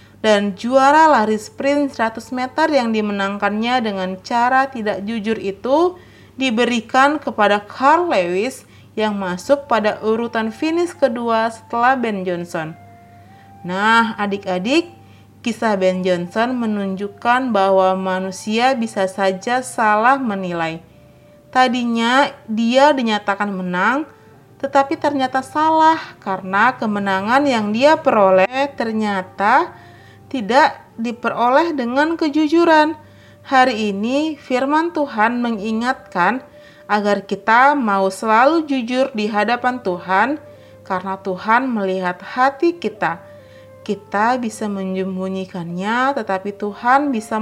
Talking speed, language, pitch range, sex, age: 100 wpm, Indonesian, 195-270 Hz, female, 30-49